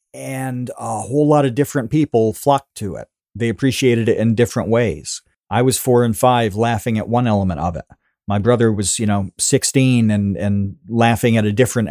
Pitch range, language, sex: 105-130 Hz, English, male